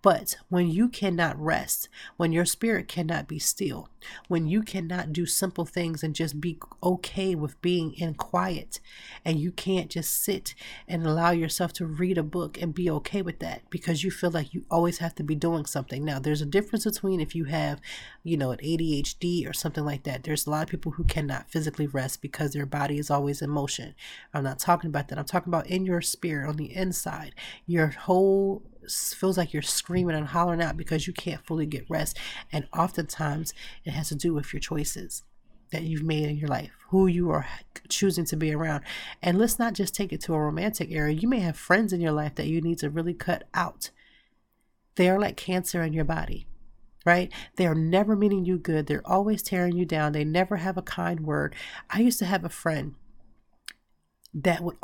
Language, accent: English, American